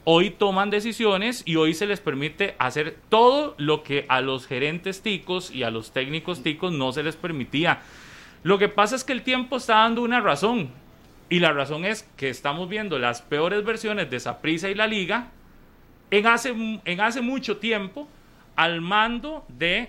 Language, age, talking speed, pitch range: Spanish, 30-49, 180 wpm, 145-205 Hz